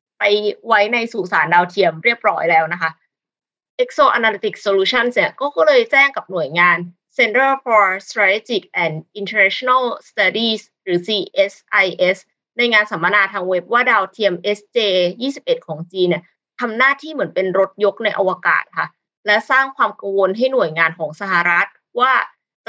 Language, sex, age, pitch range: Thai, female, 20-39, 180-235 Hz